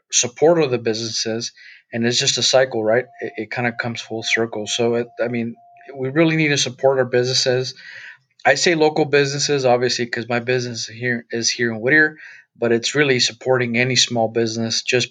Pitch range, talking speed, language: 115-130 Hz, 185 wpm, English